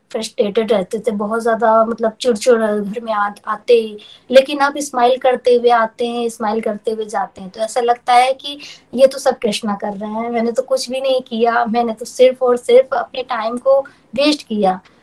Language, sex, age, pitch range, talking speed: Hindi, female, 20-39, 215-265 Hz, 175 wpm